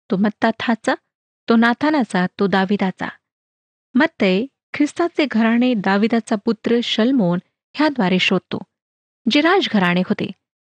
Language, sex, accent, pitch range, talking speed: Marathi, female, native, 195-270 Hz, 100 wpm